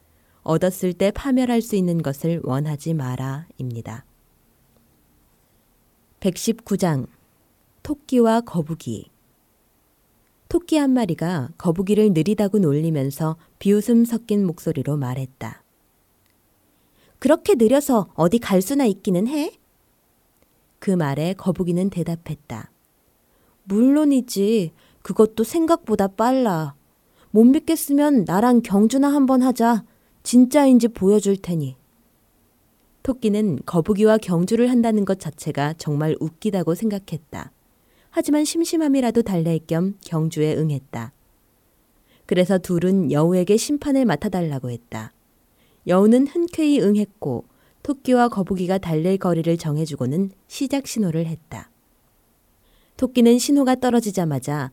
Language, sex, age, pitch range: Korean, female, 20-39, 150-235 Hz